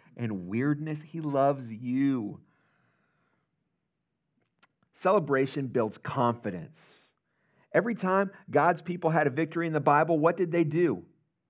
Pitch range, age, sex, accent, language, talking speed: 135-195 Hz, 40-59, male, American, English, 115 wpm